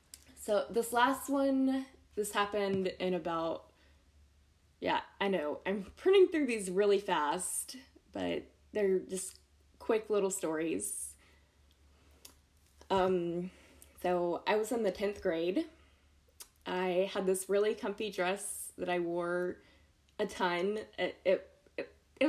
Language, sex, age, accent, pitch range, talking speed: English, female, 20-39, American, 175-245 Hz, 120 wpm